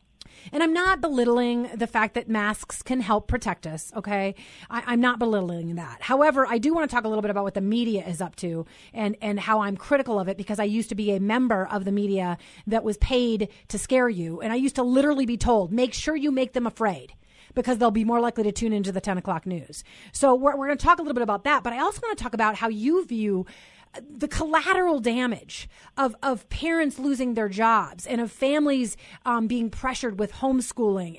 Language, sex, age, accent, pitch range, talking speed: English, female, 30-49, American, 215-285 Hz, 230 wpm